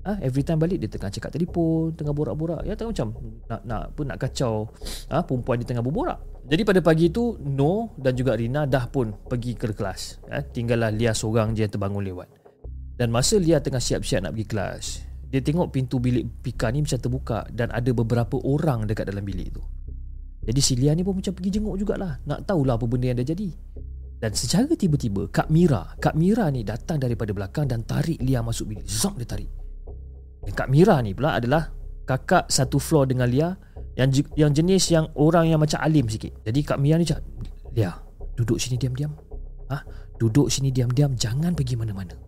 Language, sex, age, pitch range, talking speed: Malay, male, 30-49, 110-155 Hz, 205 wpm